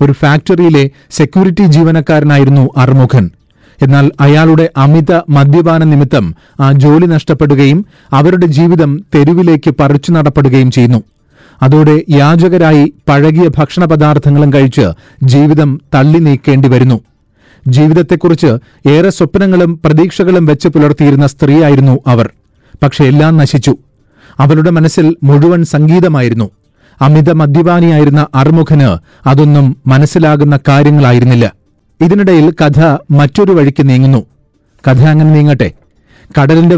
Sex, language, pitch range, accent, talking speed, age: male, Malayalam, 135-165 Hz, native, 90 wpm, 30-49